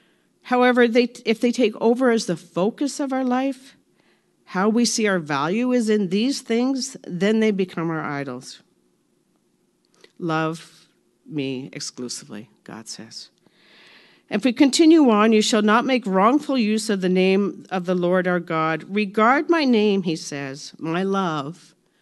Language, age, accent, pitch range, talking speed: English, 50-69, American, 165-225 Hz, 150 wpm